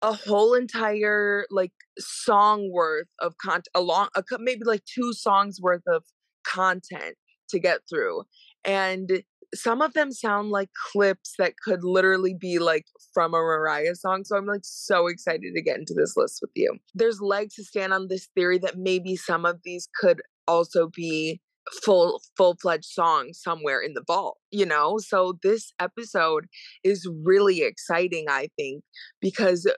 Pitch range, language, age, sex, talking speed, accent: 175-220 Hz, English, 20-39, female, 160 wpm, American